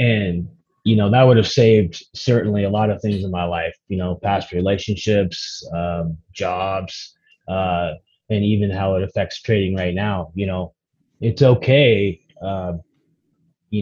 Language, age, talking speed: English, 20-39, 155 wpm